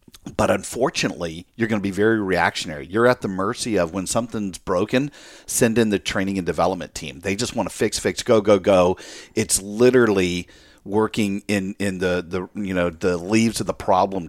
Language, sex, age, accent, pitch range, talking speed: English, male, 50-69, American, 90-110 Hz, 195 wpm